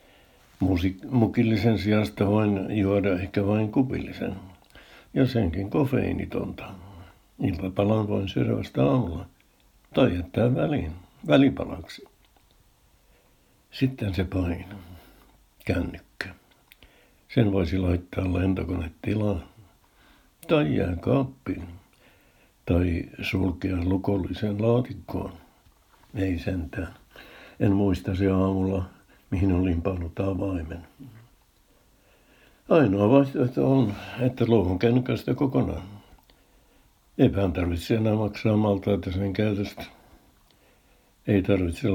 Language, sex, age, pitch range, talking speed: Finnish, male, 60-79, 95-110 Hz, 85 wpm